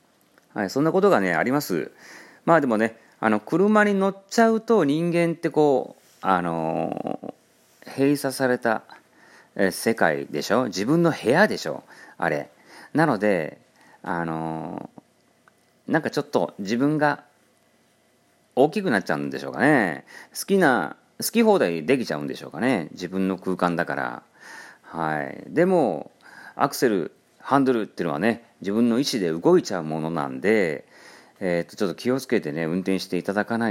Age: 40-59